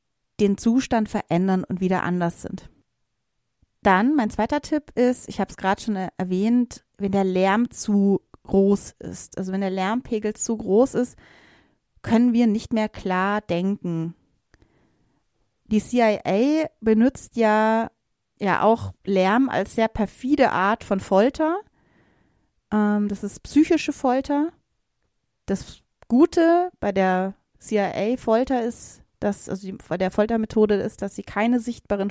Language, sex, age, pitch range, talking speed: German, female, 30-49, 190-235 Hz, 130 wpm